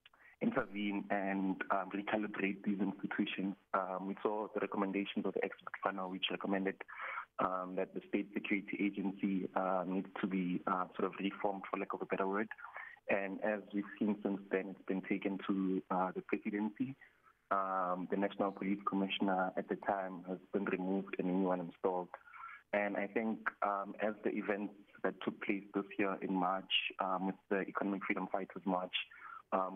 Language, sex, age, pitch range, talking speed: English, male, 20-39, 95-105 Hz, 175 wpm